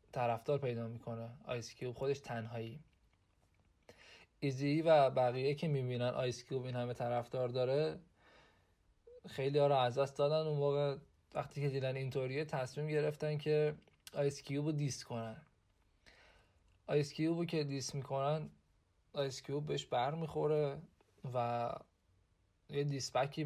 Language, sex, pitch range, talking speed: Persian, male, 120-145 Hz, 105 wpm